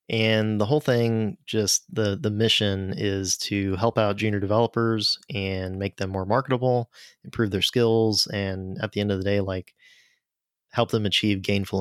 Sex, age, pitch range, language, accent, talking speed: male, 20-39, 100-115 Hz, English, American, 175 wpm